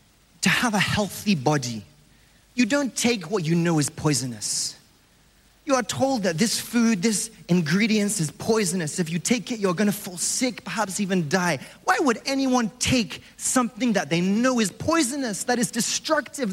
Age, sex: 30-49, male